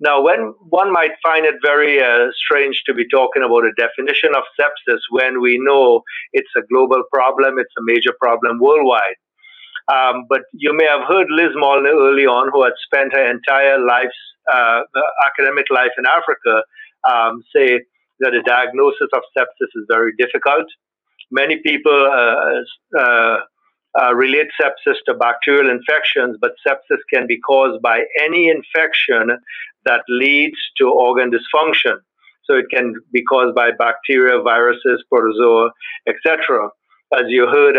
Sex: male